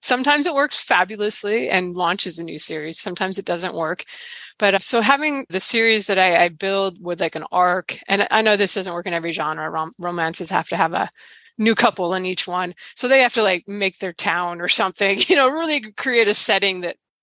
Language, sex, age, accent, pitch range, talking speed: English, female, 20-39, American, 175-220 Hz, 215 wpm